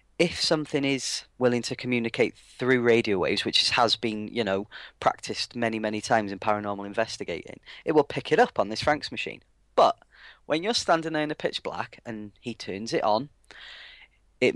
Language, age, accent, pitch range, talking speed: English, 30-49, British, 105-135 Hz, 185 wpm